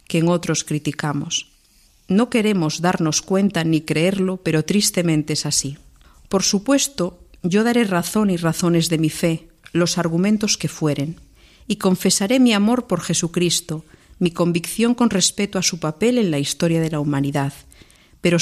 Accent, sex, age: Spanish, female, 50-69